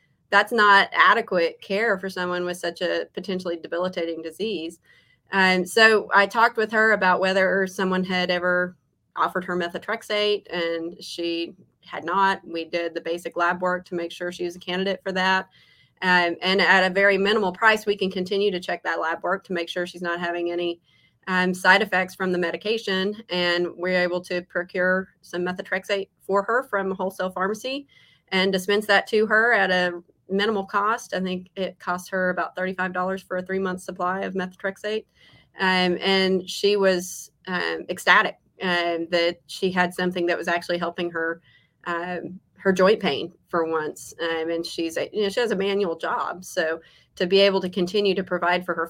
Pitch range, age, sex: 170-195 Hz, 30-49, female